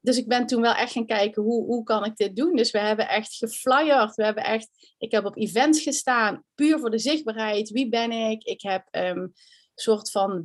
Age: 30-49